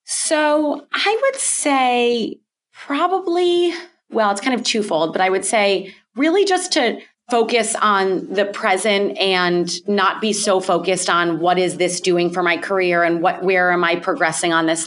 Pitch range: 180-215 Hz